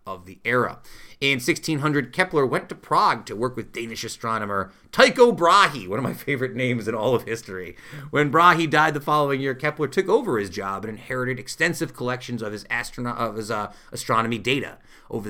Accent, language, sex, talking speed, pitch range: American, English, male, 190 wpm, 110-150 Hz